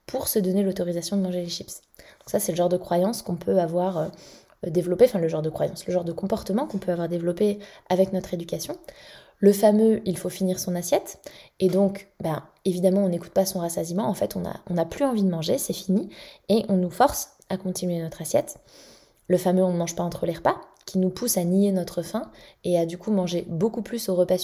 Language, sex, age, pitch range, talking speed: French, female, 20-39, 175-195 Hz, 235 wpm